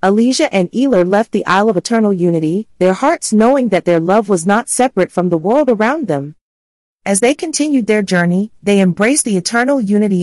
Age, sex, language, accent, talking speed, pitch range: 40-59, female, English, American, 195 wpm, 175-235 Hz